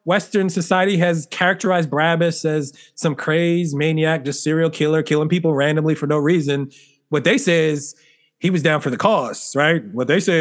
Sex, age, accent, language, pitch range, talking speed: male, 30-49, American, English, 150-175 Hz, 185 wpm